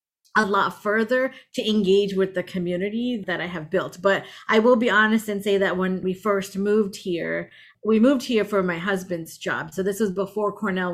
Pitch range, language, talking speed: 180-225 Hz, English, 205 wpm